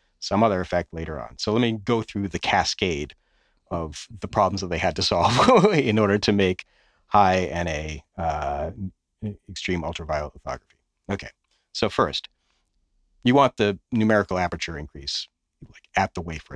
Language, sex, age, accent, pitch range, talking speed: English, male, 40-59, American, 80-110 Hz, 155 wpm